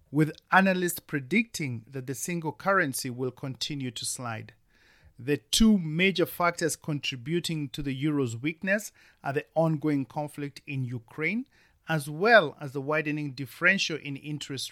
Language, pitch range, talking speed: English, 130-165 Hz, 140 wpm